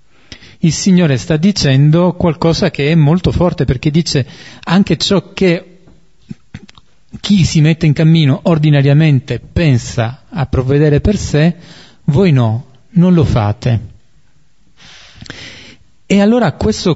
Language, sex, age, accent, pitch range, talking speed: Italian, male, 40-59, native, 120-165 Hz, 115 wpm